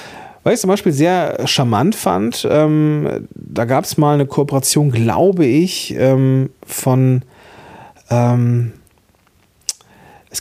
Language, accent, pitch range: German, German, 105-145 Hz